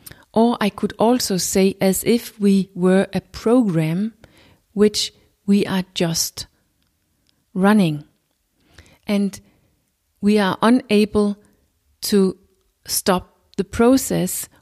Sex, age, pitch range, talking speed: female, 30-49, 140-215 Hz, 100 wpm